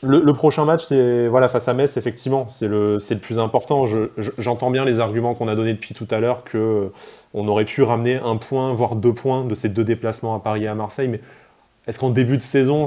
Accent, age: French, 20-39